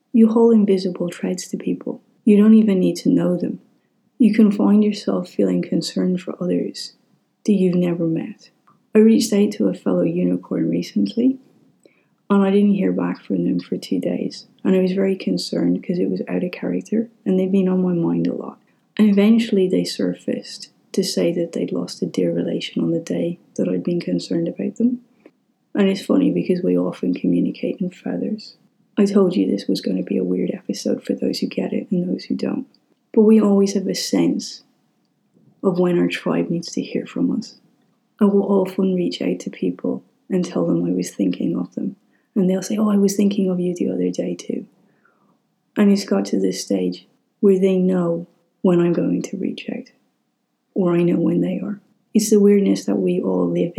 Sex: female